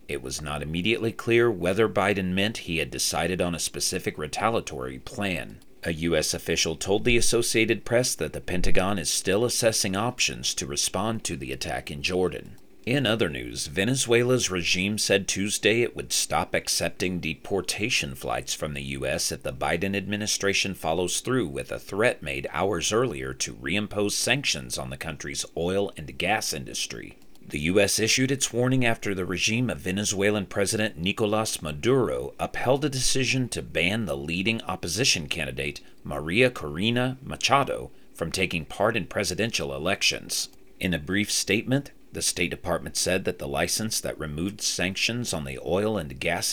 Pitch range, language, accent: 80-110 Hz, English, American